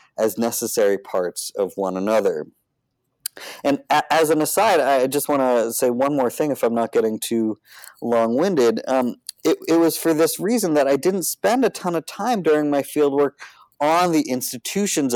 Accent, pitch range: American, 115-155 Hz